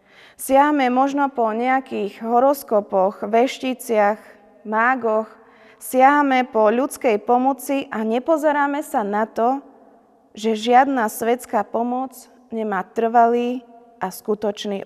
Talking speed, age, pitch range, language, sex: 95 wpm, 20-39, 210-255 Hz, Slovak, female